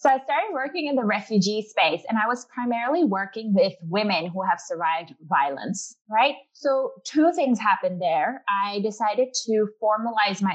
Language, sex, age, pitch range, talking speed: English, female, 20-39, 185-225 Hz, 170 wpm